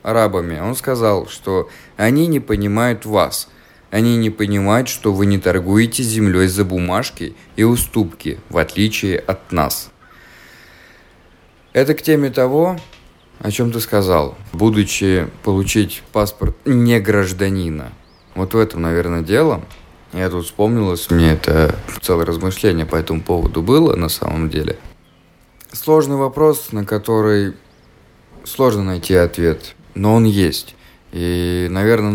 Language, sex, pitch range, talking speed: Russian, male, 85-110 Hz, 125 wpm